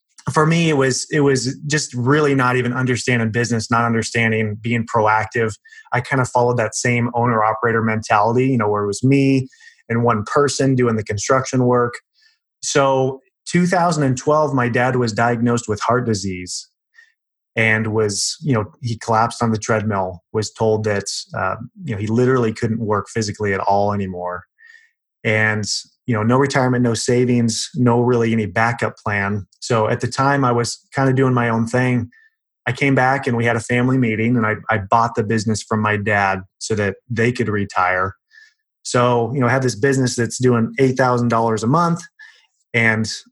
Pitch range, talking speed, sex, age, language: 110-130 Hz, 185 wpm, male, 30-49, English